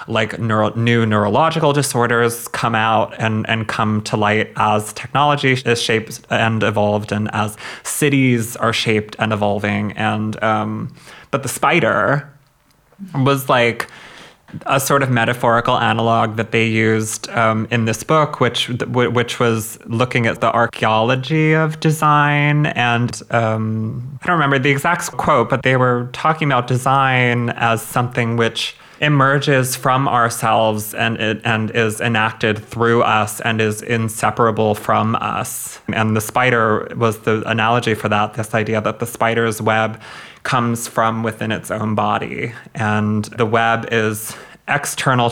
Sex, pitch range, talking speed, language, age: male, 110-125 Hz, 145 wpm, English, 20-39